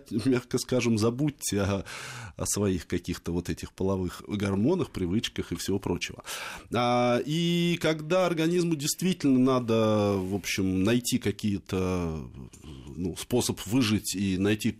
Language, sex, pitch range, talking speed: Russian, male, 100-140 Hz, 120 wpm